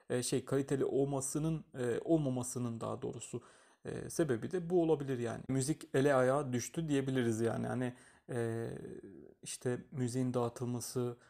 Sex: male